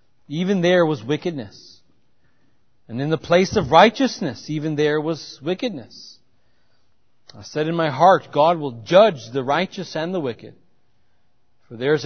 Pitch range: 135-195 Hz